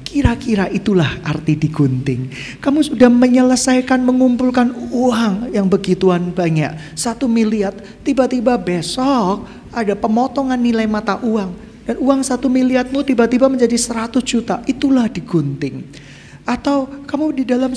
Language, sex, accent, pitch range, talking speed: Indonesian, male, native, 180-250 Hz, 120 wpm